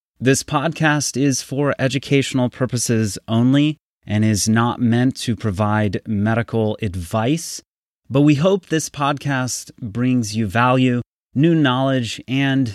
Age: 30-49